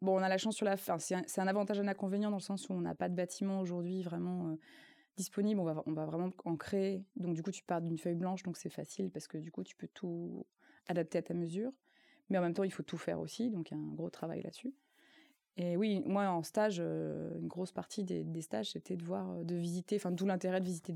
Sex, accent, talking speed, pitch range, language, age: female, French, 280 wpm, 170-200 Hz, French, 20-39